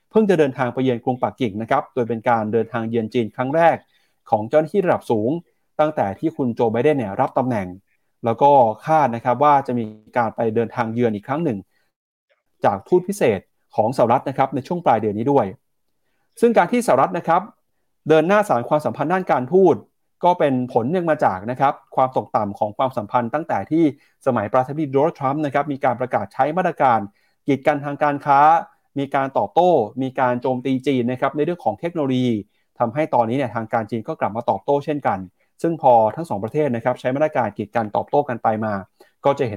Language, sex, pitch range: Thai, male, 120-155 Hz